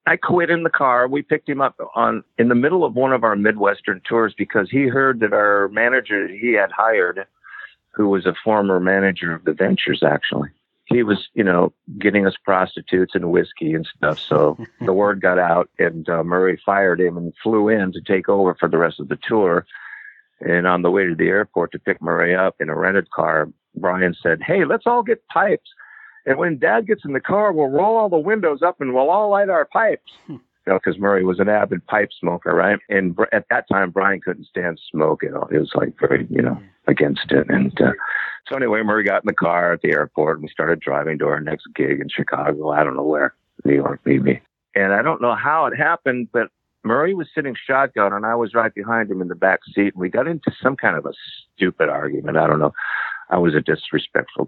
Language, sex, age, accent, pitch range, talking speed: English, male, 50-69, American, 95-140 Hz, 230 wpm